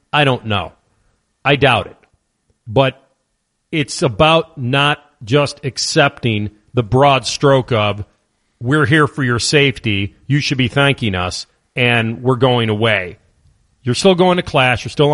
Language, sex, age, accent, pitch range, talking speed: English, male, 40-59, American, 120-155 Hz, 145 wpm